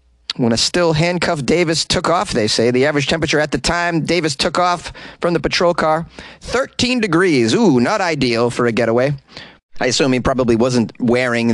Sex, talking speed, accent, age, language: male, 180 wpm, American, 30-49, English